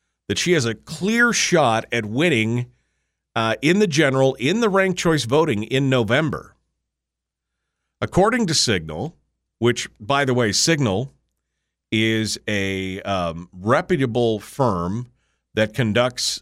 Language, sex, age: English, male, 50-69